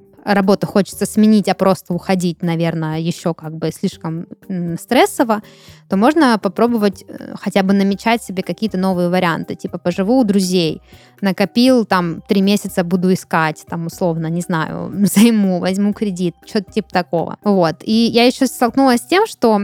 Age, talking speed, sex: 20-39, 155 wpm, female